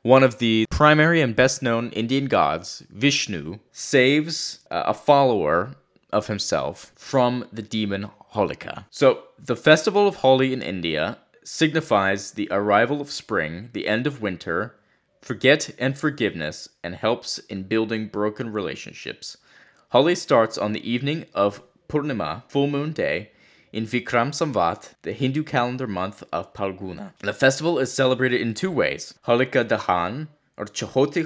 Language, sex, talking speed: English, male, 140 wpm